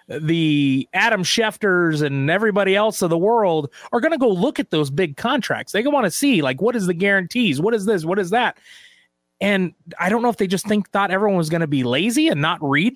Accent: American